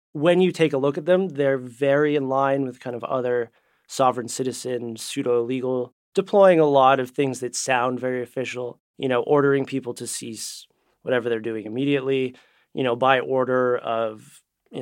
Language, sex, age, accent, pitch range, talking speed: English, male, 30-49, American, 125-145 Hz, 180 wpm